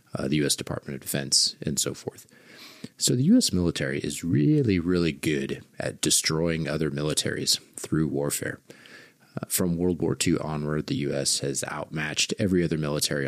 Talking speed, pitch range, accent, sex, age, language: 165 wpm, 75-95 Hz, American, male, 30-49, English